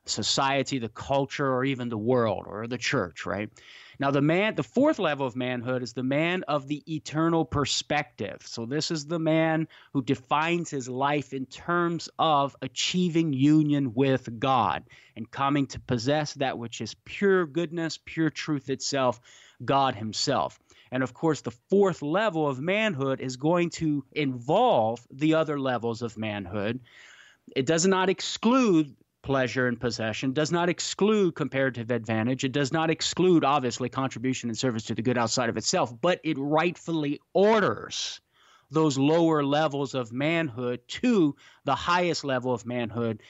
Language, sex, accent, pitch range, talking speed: English, male, American, 125-155 Hz, 160 wpm